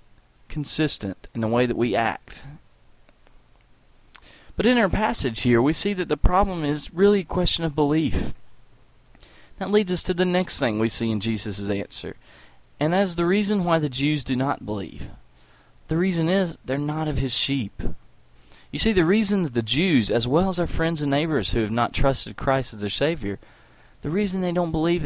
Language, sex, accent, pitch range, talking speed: English, male, American, 120-185 Hz, 190 wpm